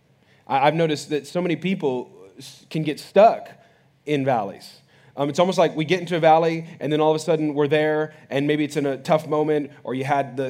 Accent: American